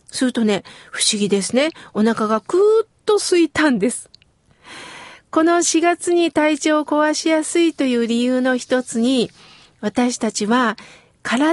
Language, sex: Japanese, female